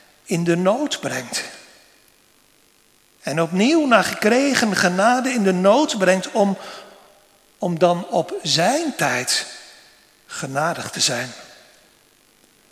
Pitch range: 165-220 Hz